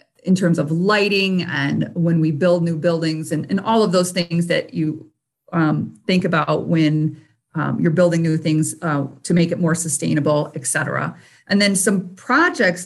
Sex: female